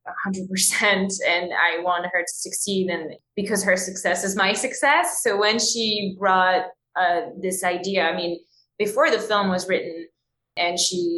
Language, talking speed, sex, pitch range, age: English, 165 wpm, female, 180-210 Hz, 20-39